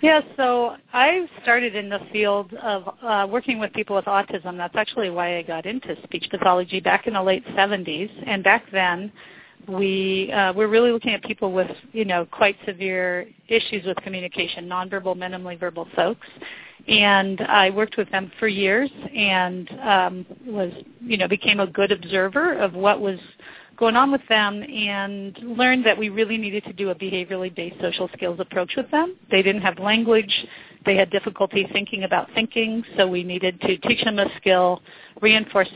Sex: female